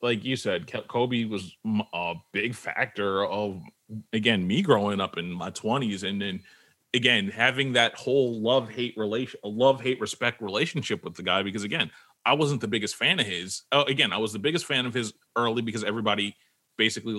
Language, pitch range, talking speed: English, 100-125 Hz, 190 wpm